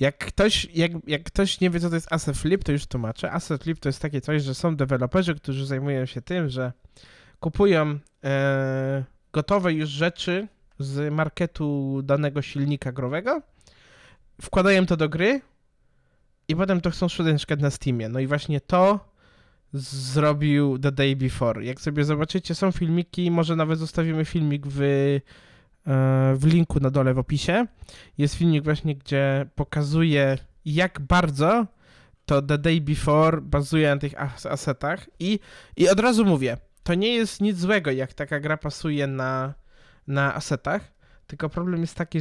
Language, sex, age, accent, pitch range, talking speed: Polish, male, 20-39, native, 140-170 Hz, 150 wpm